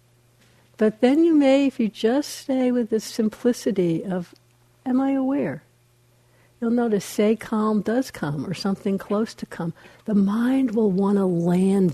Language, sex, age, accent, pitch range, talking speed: English, female, 60-79, American, 150-220 Hz, 160 wpm